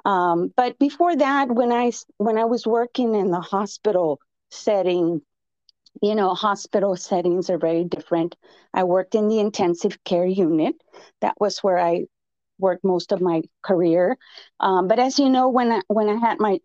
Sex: female